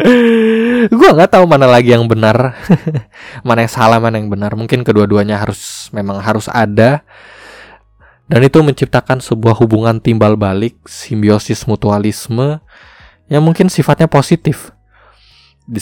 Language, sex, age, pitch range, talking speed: Indonesian, male, 20-39, 115-155 Hz, 125 wpm